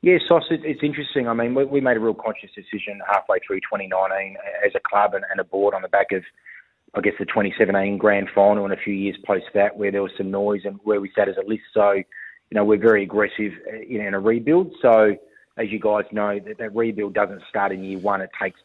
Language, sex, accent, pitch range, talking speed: English, male, Australian, 100-110 Hz, 230 wpm